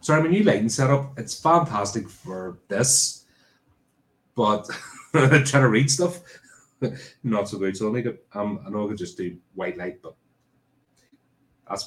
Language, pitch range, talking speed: English, 90-130 Hz, 165 wpm